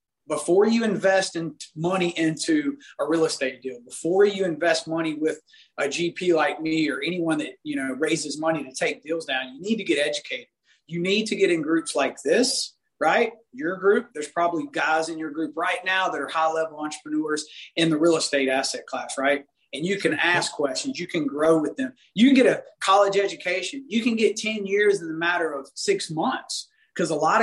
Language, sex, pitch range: English, male, 150-200 Hz